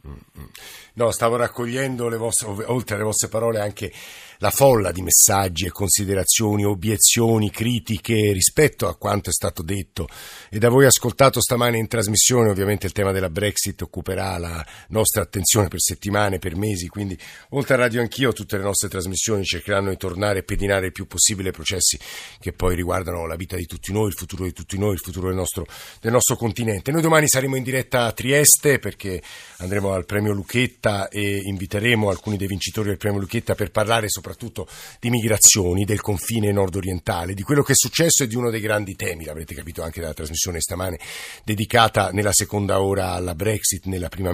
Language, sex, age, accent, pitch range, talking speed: Italian, male, 50-69, native, 95-115 Hz, 185 wpm